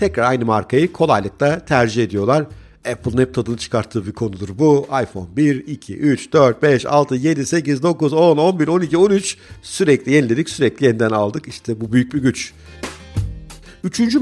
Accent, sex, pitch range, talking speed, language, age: native, male, 110-160 Hz, 160 wpm, Turkish, 50-69